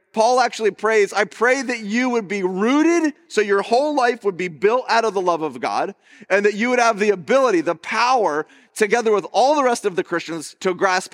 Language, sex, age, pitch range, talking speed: English, male, 40-59, 180-250 Hz, 225 wpm